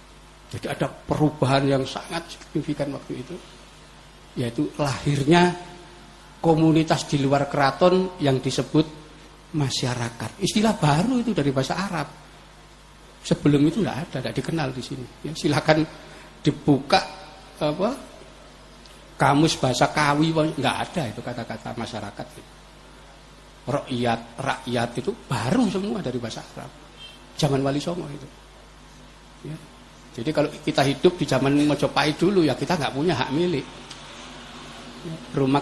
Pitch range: 140-165 Hz